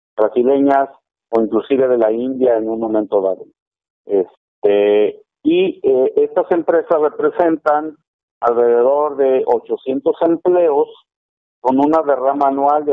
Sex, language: male, Spanish